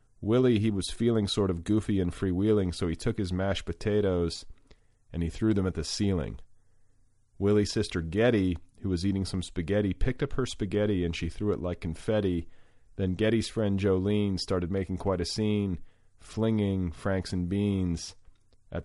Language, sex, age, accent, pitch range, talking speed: English, male, 40-59, American, 85-105 Hz, 170 wpm